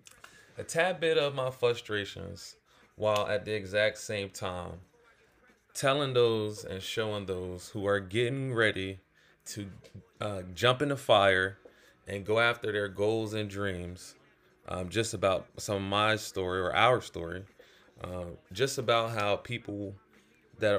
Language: English